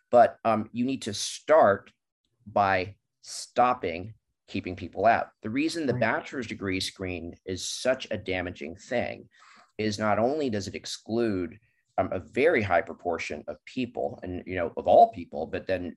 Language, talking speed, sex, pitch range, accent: English, 160 wpm, male, 95-125 Hz, American